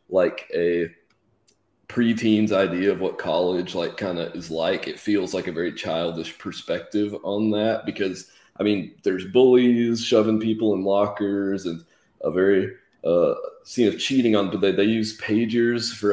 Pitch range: 95-110 Hz